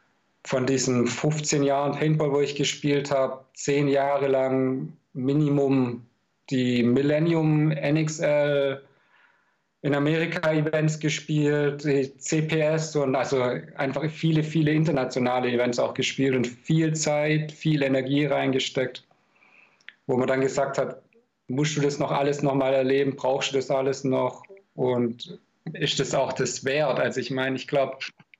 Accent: German